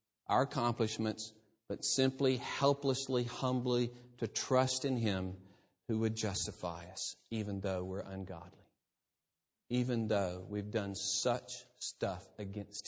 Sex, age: male, 40-59